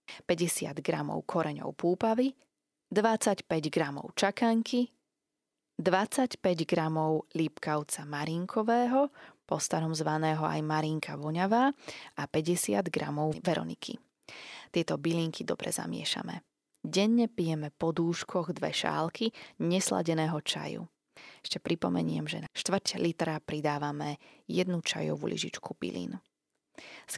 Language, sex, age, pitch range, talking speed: Slovak, female, 20-39, 155-200 Hz, 95 wpm